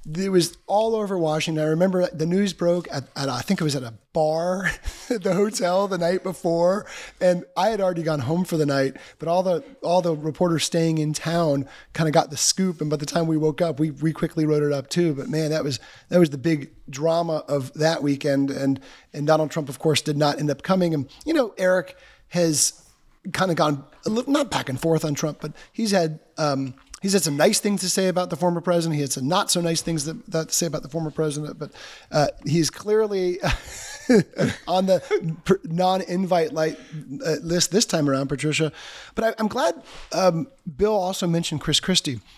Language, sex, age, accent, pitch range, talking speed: English, male, 30-49, American, 145-180 Hz, 210 wpm